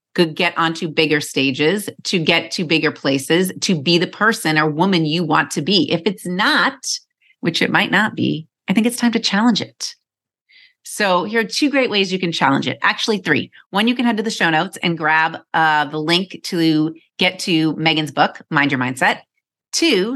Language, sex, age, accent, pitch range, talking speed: English, female, 30-49, American, 160-215 Hz, 205 wpm